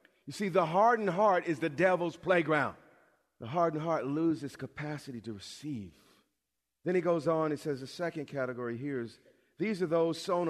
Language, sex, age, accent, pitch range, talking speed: English, male, 40-59, American, 150-200 Hz, 175 wpm